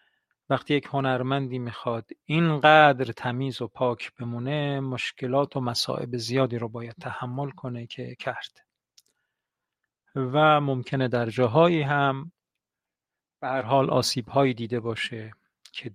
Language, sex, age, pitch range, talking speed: Persian, male, 50-69, 120-145 Hz, 115 wpm